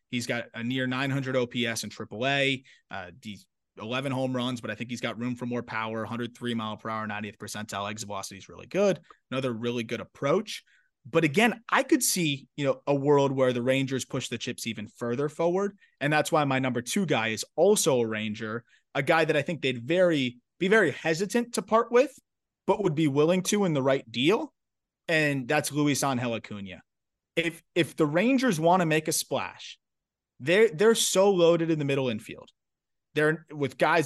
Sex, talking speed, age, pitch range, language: male, 195 wpm, 30-49, 115-160 Hz, English